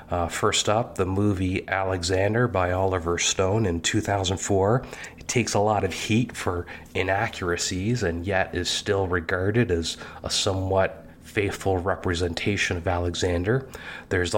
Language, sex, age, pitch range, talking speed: English, male, 30-49, 85-100 Hz, 135 wpm